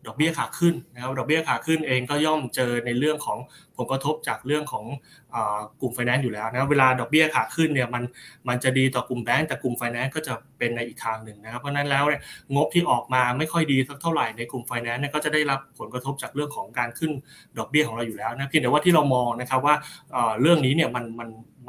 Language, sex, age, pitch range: Thai, male, 20-39, 120-150 Hz